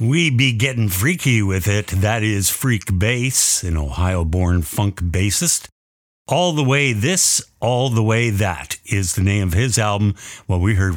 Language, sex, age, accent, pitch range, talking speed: English, male, 50-69, American, 90-120 Hz, 170 wpm